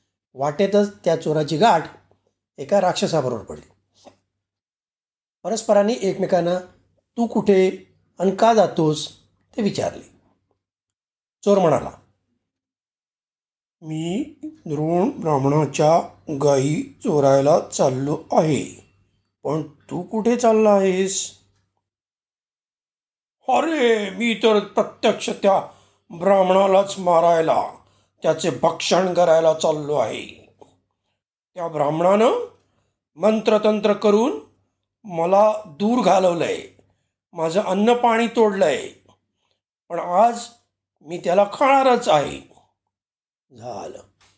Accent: native